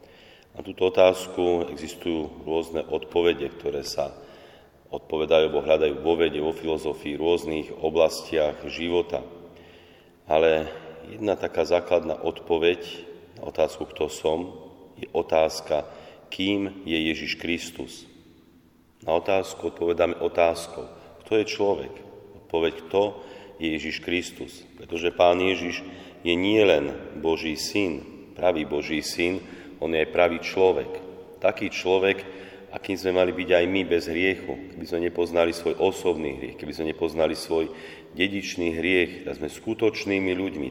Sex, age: male, 40-59